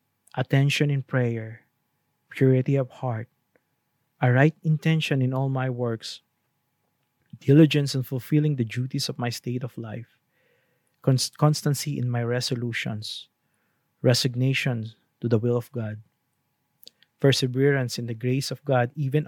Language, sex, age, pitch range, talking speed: English, male, 20-39, 120-140 Hz, 125 wpm